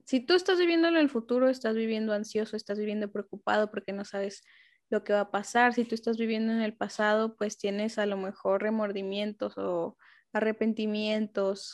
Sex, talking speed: female, 185 wpm